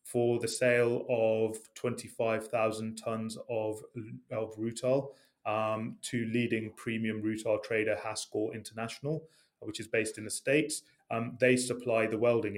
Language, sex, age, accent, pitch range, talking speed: English, male, 30-49, British, 110-125 Hz, 135 wpm